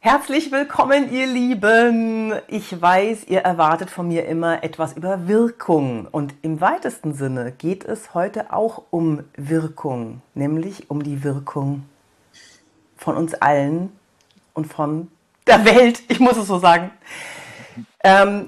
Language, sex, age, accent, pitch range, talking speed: German, female, 40-59, German, 160-205 Hz, 135 wpm